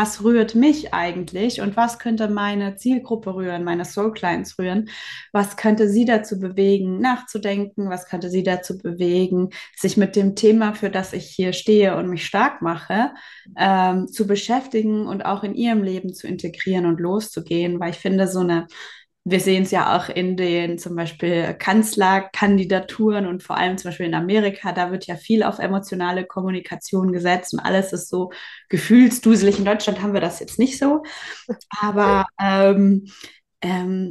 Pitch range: 185-215 Hz